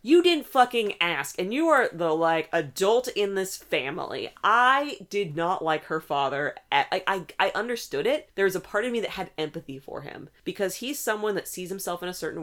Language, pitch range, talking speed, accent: English, 150-195 Hz, 215 wpm, American